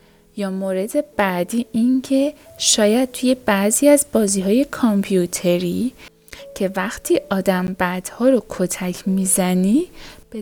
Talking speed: 110 wpm